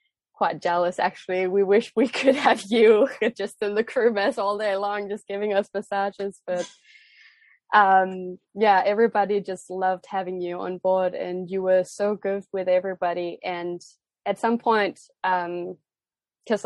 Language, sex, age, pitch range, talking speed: English, female, 20-39, 180-205 Hz, 160 wpm